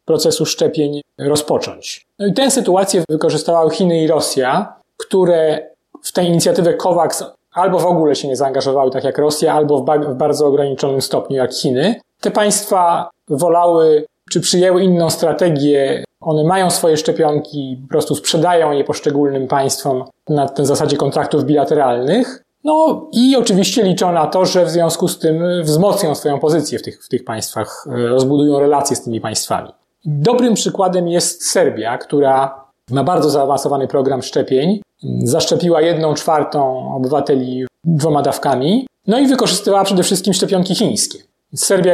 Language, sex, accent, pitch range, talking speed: Polish, male, native, 145-180 Hz, 150 wpm